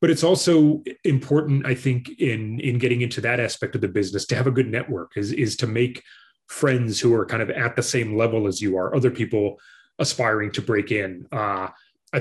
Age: 30-49